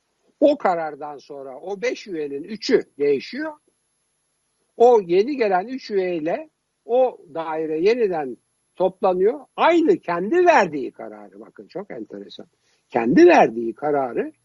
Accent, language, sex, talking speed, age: native, Turkish, male, 110 wpm, 60-79